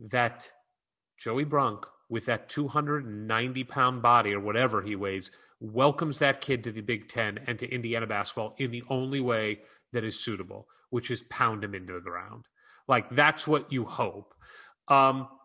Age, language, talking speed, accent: 30-49, English, 165 wpm, American